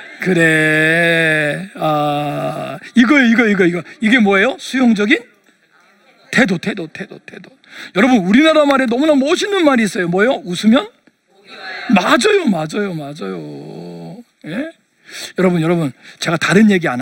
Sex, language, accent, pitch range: male, Korean, native, 155-225 Hz